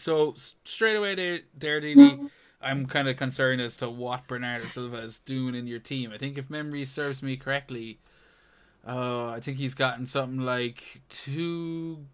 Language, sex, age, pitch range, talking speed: English, male, 20-39, 120-150 Hz, 170 wpm